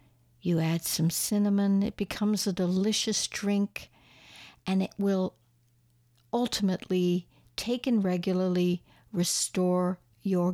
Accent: American